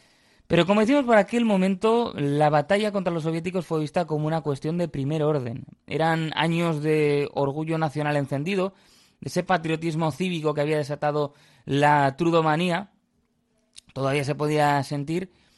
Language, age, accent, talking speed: Spanish, 20-39, Spanish, 145 wpm